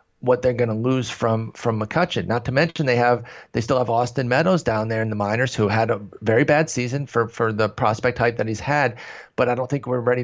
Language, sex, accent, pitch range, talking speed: English, male, American, 110-135 Hz, 250 wpm